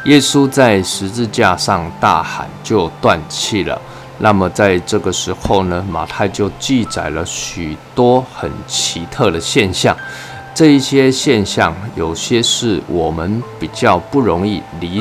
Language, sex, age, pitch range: Chinese, male, 20-39, 90-125 Hz